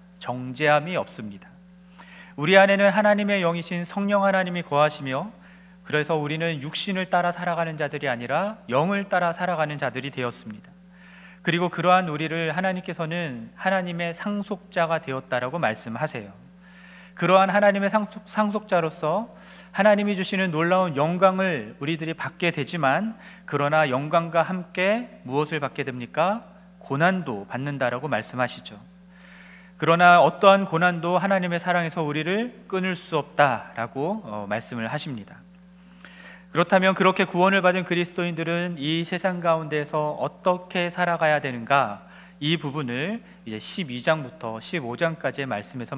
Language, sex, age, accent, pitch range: Korean, male, 40-59, native, 150-185 Hz